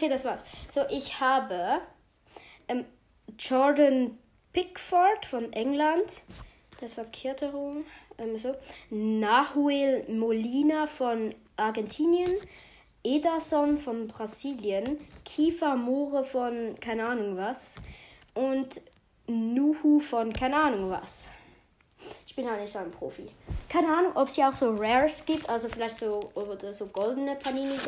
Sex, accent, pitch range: female, German, 220-295 Hz